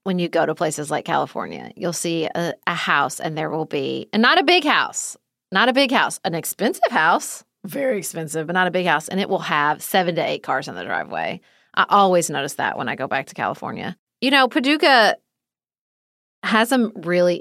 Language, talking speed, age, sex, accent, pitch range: English, 215 wpm, 30-49, female, American, 165-225 Hz